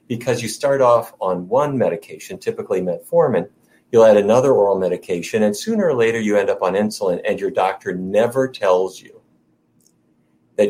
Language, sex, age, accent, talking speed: English, male, 50-69, American, 170 wpm